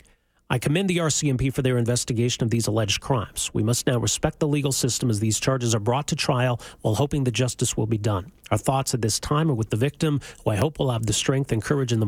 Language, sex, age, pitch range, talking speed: English, male, 40-59, 120-155 Hz, 260 wpm